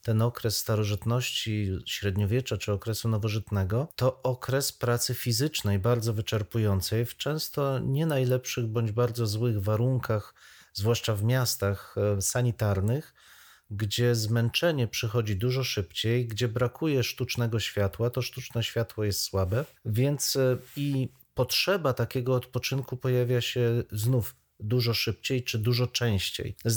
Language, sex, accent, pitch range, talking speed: Polish, male, native, 110-135 Hz, 120 wpm